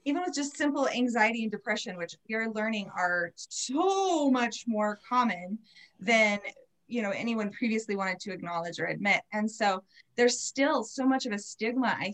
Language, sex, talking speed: English, female, 175 wpm